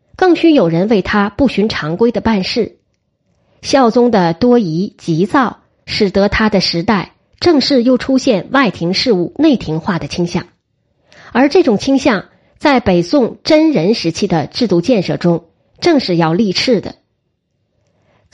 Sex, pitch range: female, 180-270 Hz